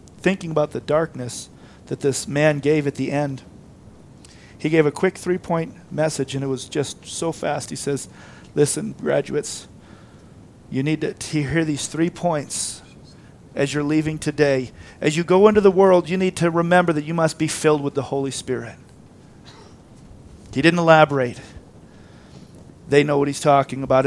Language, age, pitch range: English, 40-59, 125-160 Hz